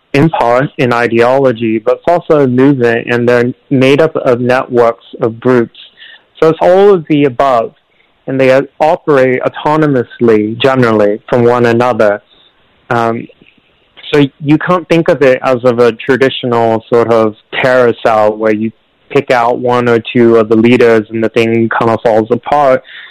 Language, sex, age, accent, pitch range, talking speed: English, male, 30-49, American, 115-130 Hz, 165 wpm